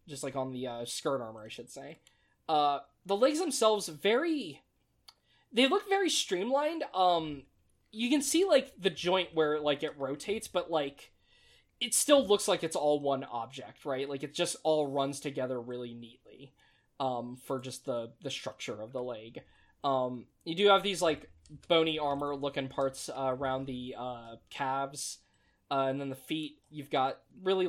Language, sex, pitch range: English, male, 135-215 Hz